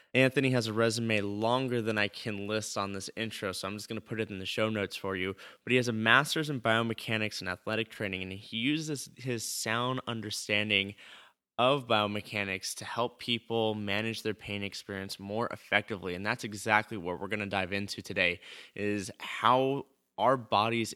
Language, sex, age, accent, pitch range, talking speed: English, male, 20-39, American, 105-115 Hz, 190 wpm